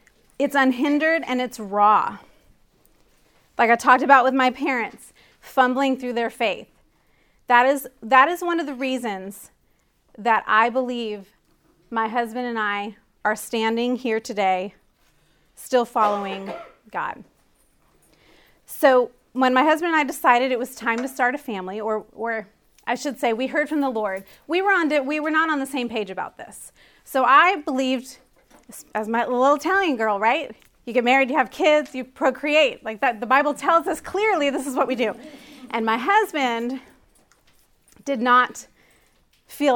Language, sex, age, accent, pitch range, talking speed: English, female, 30-49, American, 220-275 Hz, 165 wpm